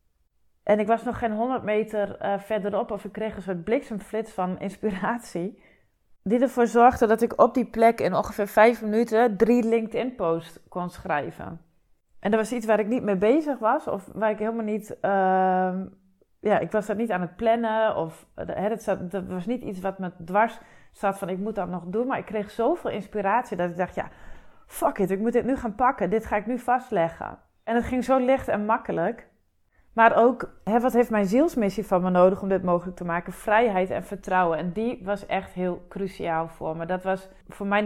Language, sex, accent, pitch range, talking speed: Dutch, female, Dutch, 185-225 Hz, 210 wpm